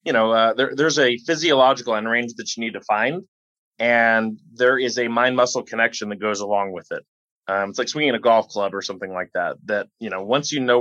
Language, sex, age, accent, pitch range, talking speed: English, male, 20-39, American, 110-135 Hz, 240 wpm